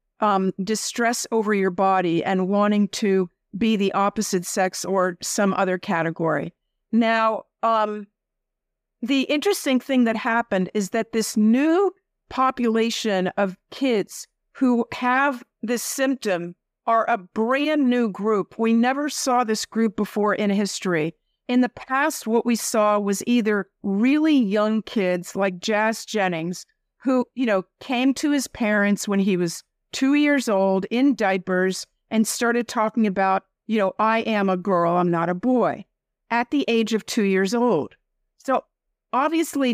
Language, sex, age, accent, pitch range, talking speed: English, female, 50-69, American, 200-245 Hz, 150 wpm